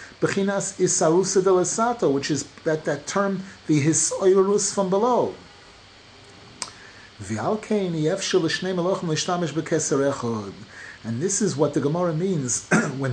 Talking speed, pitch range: 80 wpm, 155-215 Hz